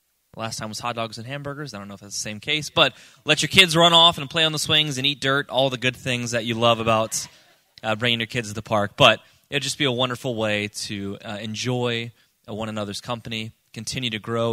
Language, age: English, 20-39